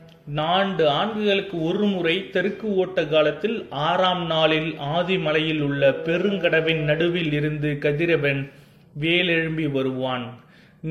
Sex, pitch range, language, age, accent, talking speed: male, 155-200 Hz, Tamil, 30-49, native, 95 wpm